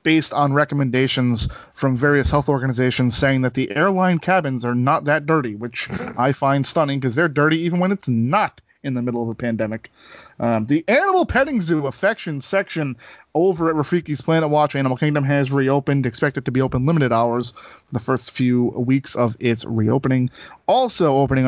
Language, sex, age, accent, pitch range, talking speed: English, male, 30-49, American, 130-170 Hz, 185 wpm